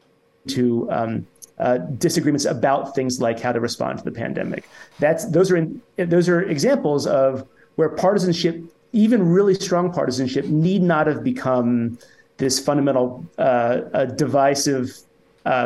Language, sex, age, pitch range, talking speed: English, male, 30-49, 130-175 Hz, 140 wpm